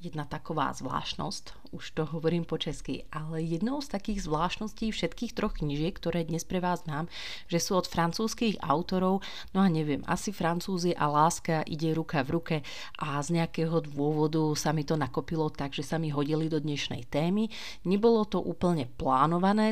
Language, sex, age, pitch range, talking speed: Slovak, female, 30-49, 155-185 Hz, 175 wpm